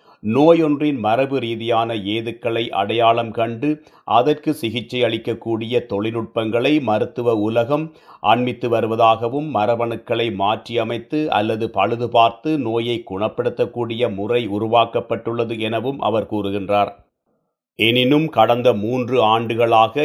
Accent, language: native, Tamil